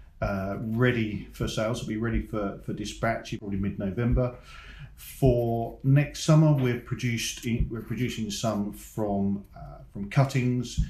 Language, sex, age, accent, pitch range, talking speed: English, male, 40-59, British, 100-115 Hz, 150 wpm